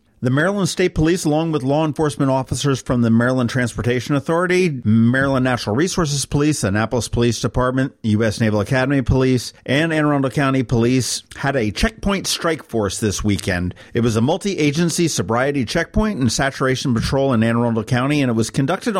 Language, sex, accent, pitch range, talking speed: English, male, American, 110-140 Hz, 170 wpm